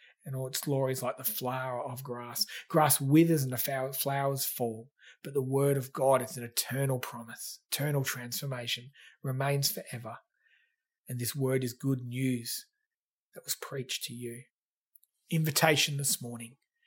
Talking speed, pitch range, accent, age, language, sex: 155 wpm, 130-180 Hz, Australian, 30-49, English, male